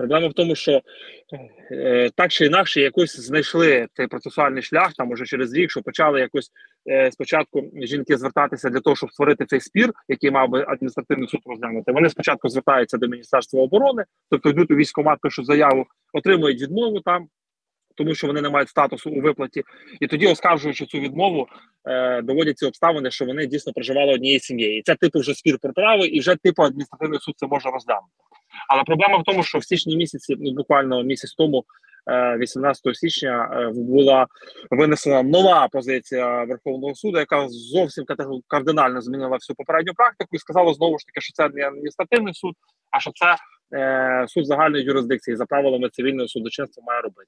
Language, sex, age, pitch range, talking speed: Ukrainian, male, 30-49, 130-165 Hz, 170 wpm